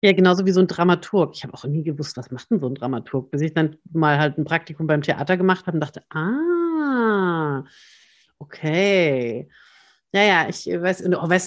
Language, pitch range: German, 155-195 Hz